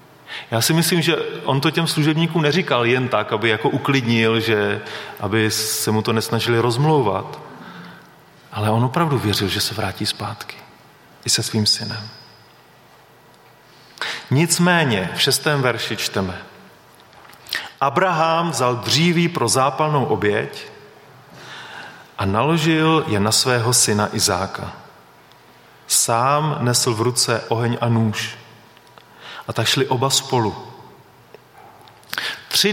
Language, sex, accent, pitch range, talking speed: Czech, male, native, 115-155 Hz, 115 wpm